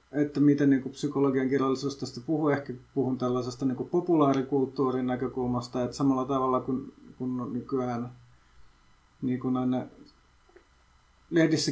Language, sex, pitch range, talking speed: Finnish, male, 125-140 Hz, 115 wpm